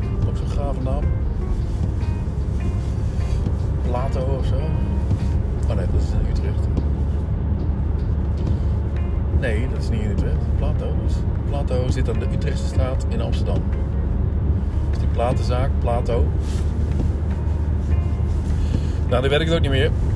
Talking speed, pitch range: 110 wpm, 90-110 Hz